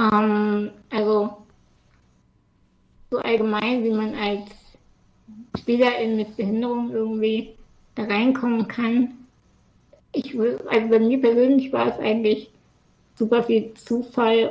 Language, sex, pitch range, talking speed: English, female, 225-260 Hz, 100 wpm